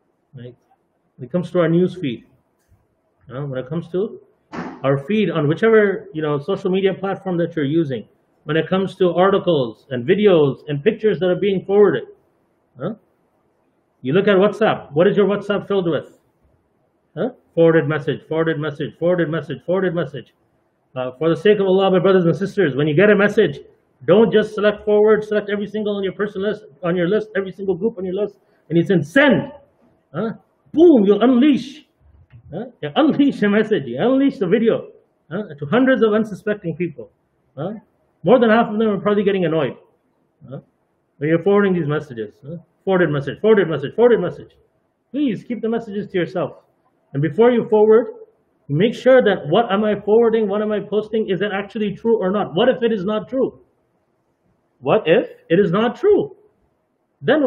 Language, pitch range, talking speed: English, 165-220 Hz, 185 wpm